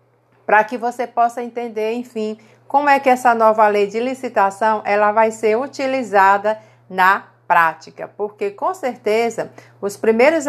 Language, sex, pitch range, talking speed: Portuguese, female, 185-230 Hz, 145 wpm